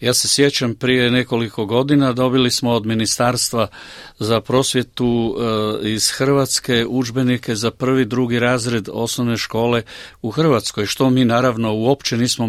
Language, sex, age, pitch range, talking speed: Croatian, male, 50-69, 110-130 Hz, 135 wpm